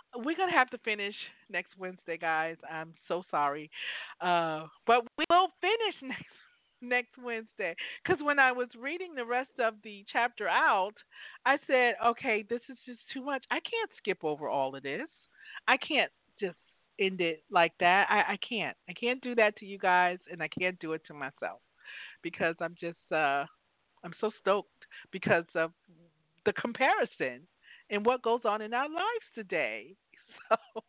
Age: 50-69